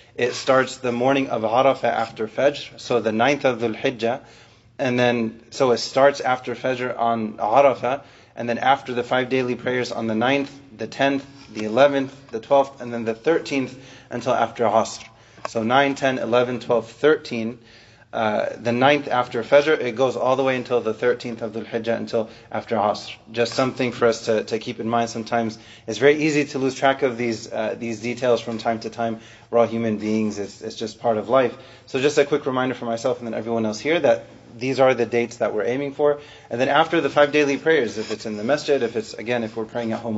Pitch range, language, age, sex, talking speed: 115-135 Hz, English, 30-49, male, 215 wpm